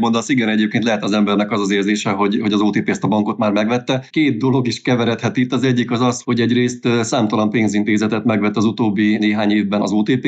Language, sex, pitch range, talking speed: Hungarian, male, 105-125 Hz, 220 wpm